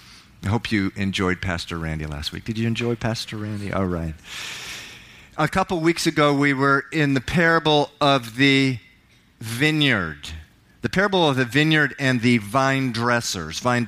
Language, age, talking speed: English, 40-59, 155 wpm